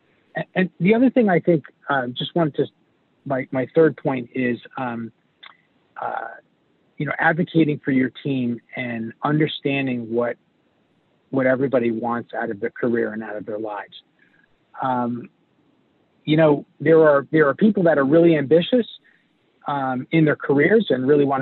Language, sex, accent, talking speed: English, male, American, 160 wpm